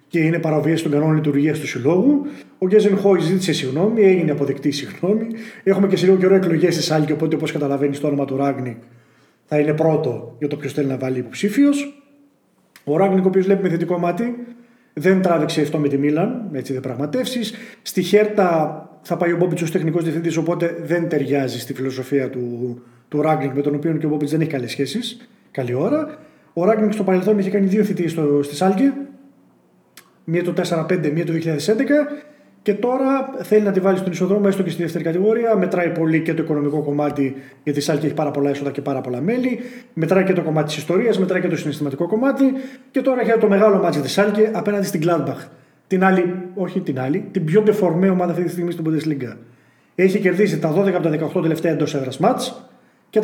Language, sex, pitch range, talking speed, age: Greek, male, 150-205 Hz, 200 wpm, 30-49